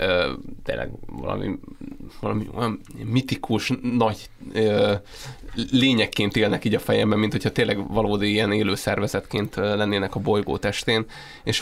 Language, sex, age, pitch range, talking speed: Hungarian, male, 20-39, 105-115 Hz, 115 wpm